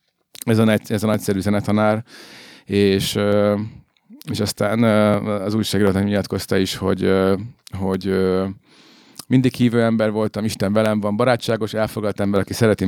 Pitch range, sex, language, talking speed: 95-115 Hz, male, Hungarian, 125 wpm